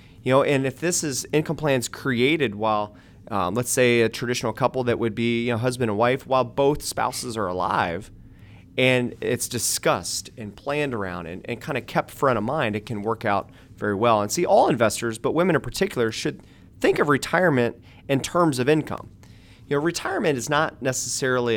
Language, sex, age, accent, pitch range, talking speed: English, male, 30-49, American, 110-135 Hz, 200 wpm